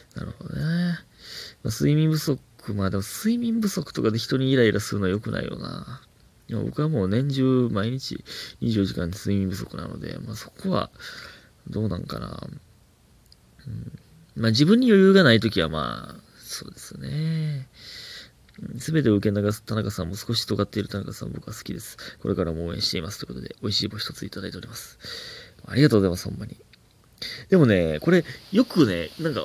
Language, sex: Japanese, male